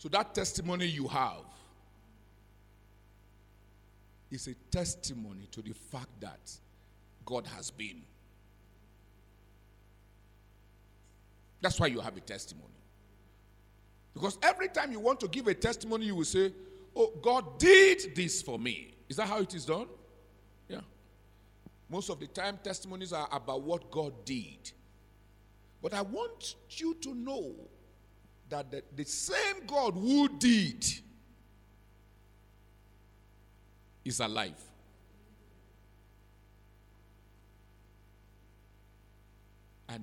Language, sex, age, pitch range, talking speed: English, male, 50-69, 110-170 Hz, 105 wpm